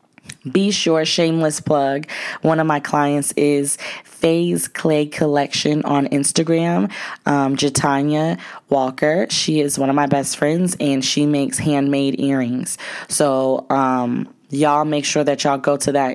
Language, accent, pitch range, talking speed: English, American, 135-155 Hz, 145 wpm